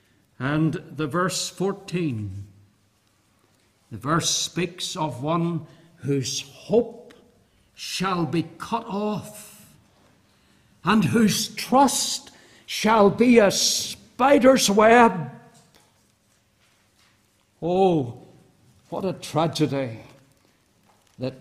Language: English